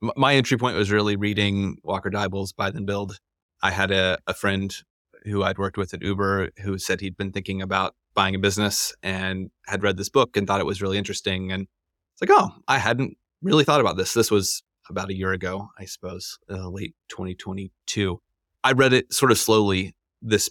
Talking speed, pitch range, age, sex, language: 205 wpm, 95-105 Hz, 30-49, male, English